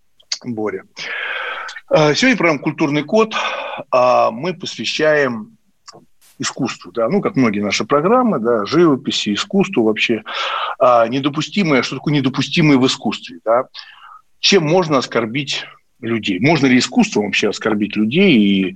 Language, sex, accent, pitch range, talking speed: Russian, male, native, 115-190 Hz, 120 wpm